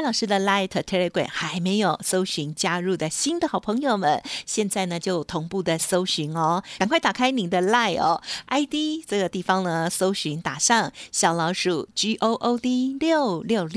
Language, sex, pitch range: Chinese, female, 175-230 Hz